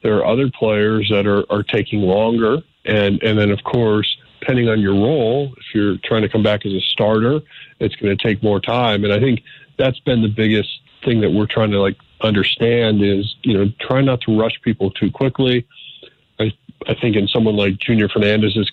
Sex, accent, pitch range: male, American, 100-115 Hz